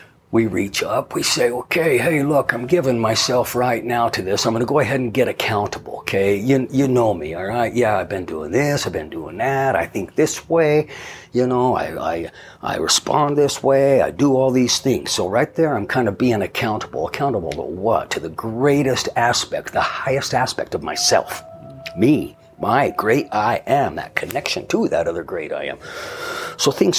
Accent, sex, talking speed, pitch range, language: American, male, 200 wpm, 100-135 Hz, English